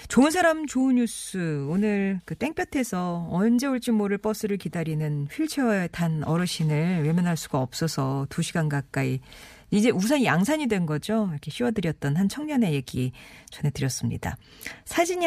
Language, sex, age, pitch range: Korean, female, 40-59, 155-225 Hz